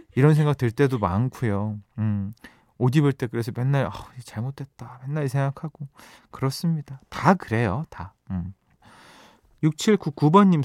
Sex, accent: male, native